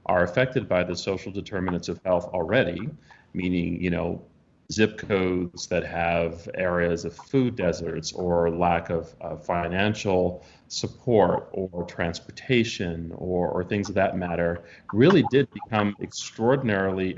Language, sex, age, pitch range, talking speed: English, male, 30-49, 90-100 Hz, 135 wpm